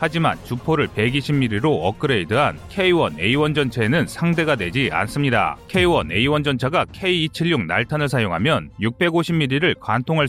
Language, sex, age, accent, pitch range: Korean, male, 30-49, native, 125-165 Hz